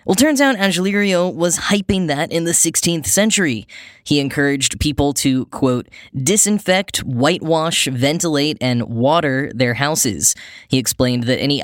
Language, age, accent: English, 10-29, American